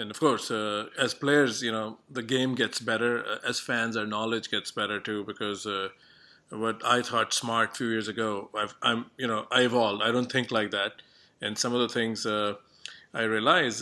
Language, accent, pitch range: English, Indian, 110-125 Hz